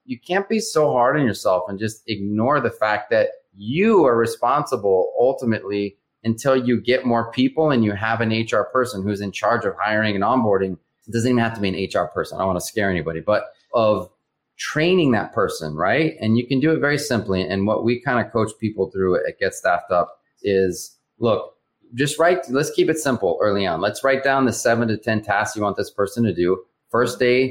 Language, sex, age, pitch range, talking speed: English, male, 30-49, 105-125 Hz, 220 wpm